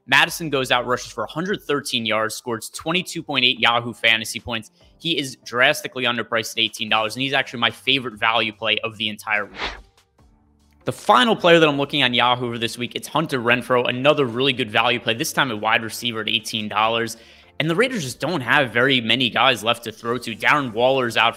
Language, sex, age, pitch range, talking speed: English, male, 20-39, 115-135 Hz, 200 wpm